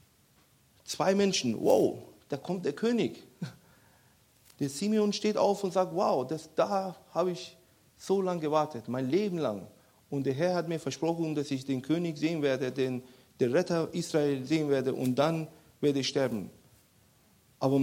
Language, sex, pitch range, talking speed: German, male, 140-185 Hz, 160 wpm